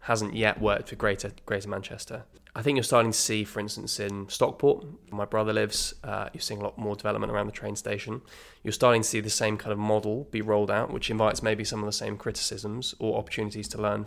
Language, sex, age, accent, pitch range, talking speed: English, male, 20-39, British, 105-115 Hz, 240 wpm